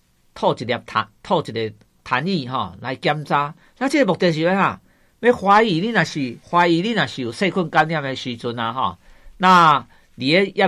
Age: 50-69